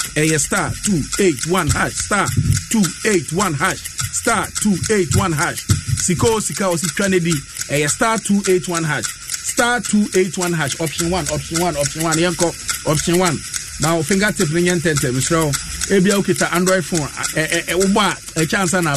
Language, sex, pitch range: English, male, 155-190 Hz